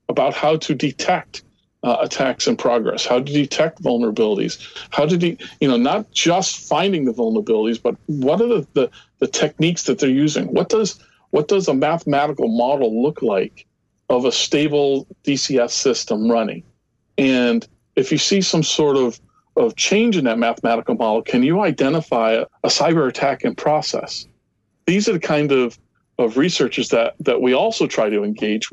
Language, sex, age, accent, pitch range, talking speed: English, male, 40-59, American, 120-175 Hz, 175 wpm